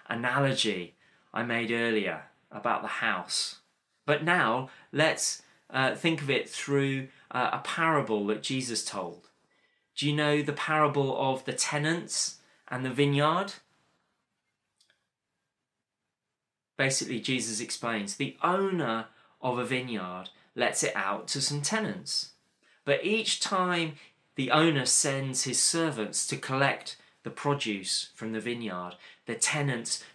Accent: British